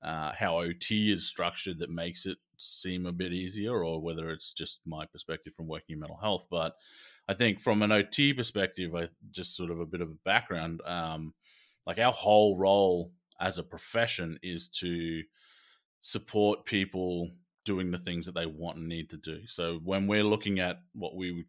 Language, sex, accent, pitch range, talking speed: English, male, Australian, 85-100 Hz, 200 wpm